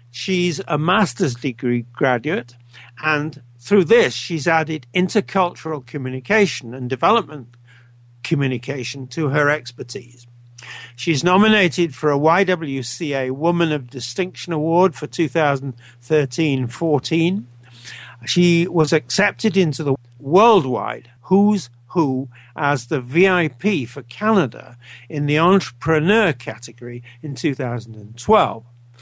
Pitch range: 125-170 Hz